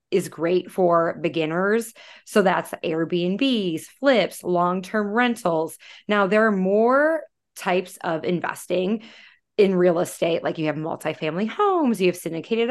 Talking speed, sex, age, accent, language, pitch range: 130 wpm, female, 20-39, American, English, 170-225 Hz